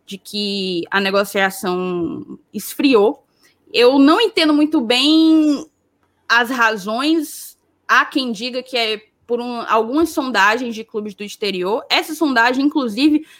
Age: 10-29